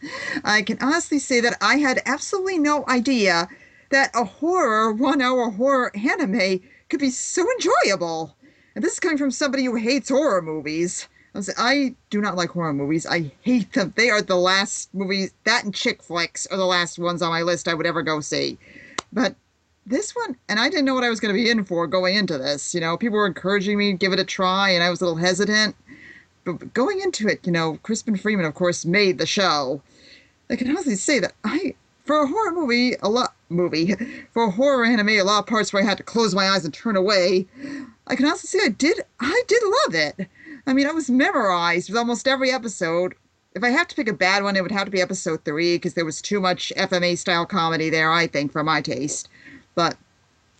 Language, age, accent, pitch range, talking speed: English, 40-59, American, 175-260 Hz, 225 wpm